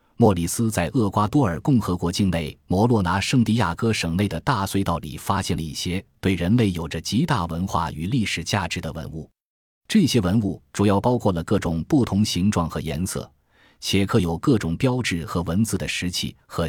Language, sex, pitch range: Chinese, male, 85-115 Hz